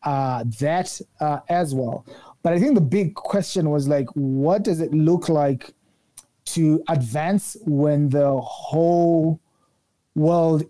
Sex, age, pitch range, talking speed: male, 30-49, 140-170 Hz, 135 wpm